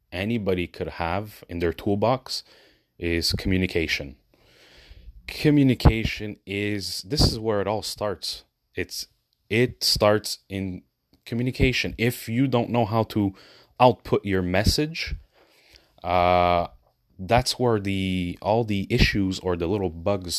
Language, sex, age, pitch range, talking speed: English, male, 30-49, 90-115 Hz, 120 wpm